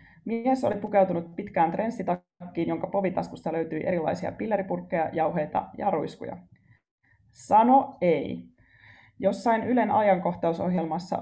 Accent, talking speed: native, 95 wpm